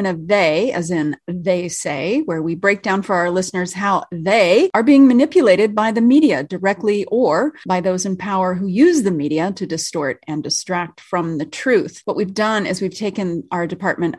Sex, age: female, 30-49